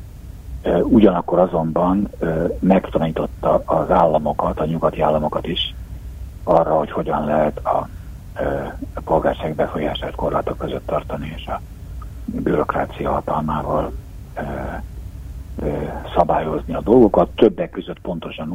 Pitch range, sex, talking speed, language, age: 75-95 Hz, male, 115 wpm, Hungarian, 60-79